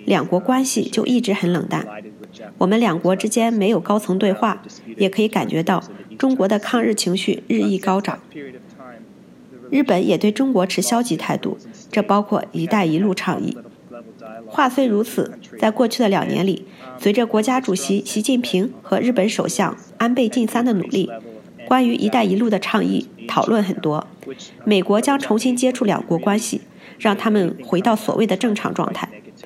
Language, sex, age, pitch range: English, female, 50-69, 180-235 Hz